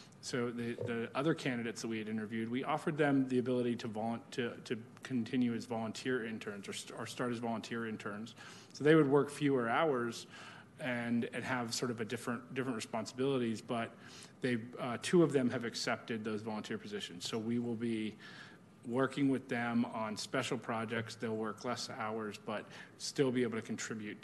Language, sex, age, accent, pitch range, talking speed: English, male, 30-49, American, 110-125 Hz, 185 wpm